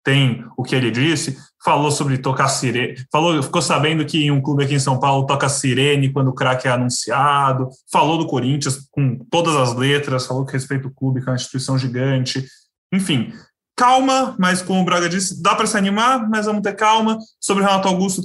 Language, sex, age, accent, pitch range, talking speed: Portuguese, male, 20-39, Brazilian, 135-180 Hz, 205 wpm